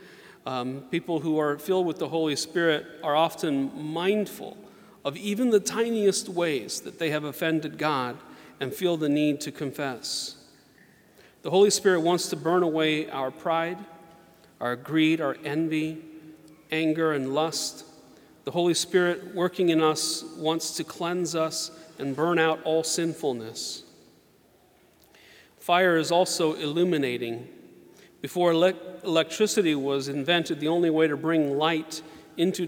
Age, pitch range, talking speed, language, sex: 40-59, 150-175 Hz, 135 wpm, English, male